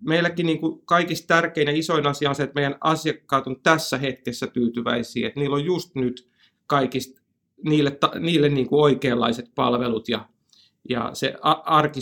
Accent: native